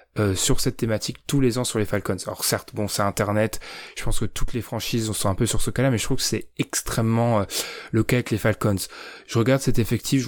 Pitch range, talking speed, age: 105-130 Hz, 255 wpm, 20-39